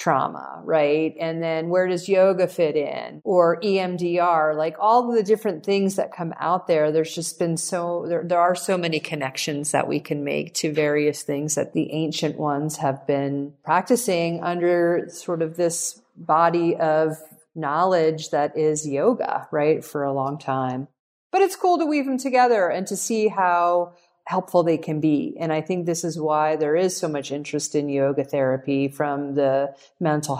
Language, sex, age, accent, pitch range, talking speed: English, female, 40-59, American, 150-195 Hz, 180 wpm